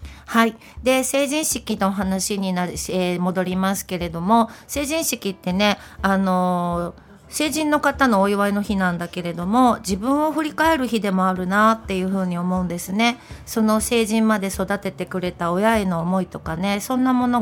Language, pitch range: Japanese, 185-225 Hz